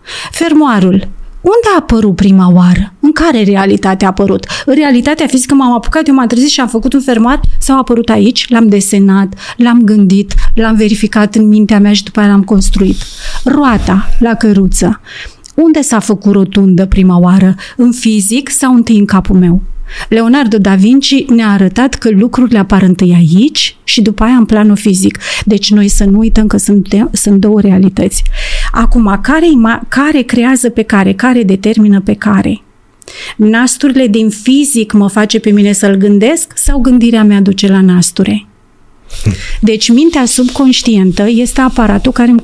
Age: 30-49